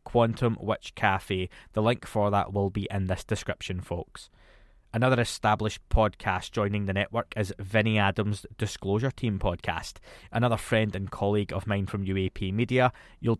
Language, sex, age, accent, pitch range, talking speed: English, male, 20-39, British, 100-120 Hz, 155 wpm